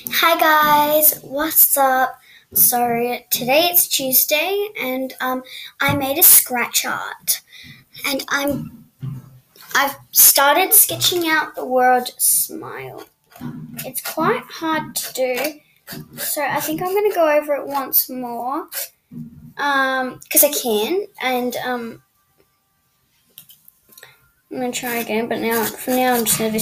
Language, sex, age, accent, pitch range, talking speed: English, female, 10-29, Australian, 230-305 Hz, 130 wpm